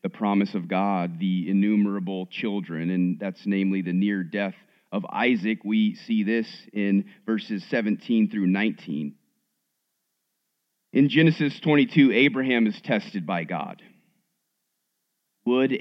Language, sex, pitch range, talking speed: English, male, 100-165 Hz, 120 wpm